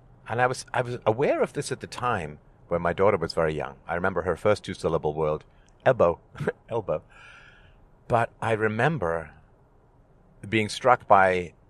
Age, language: 50-69, English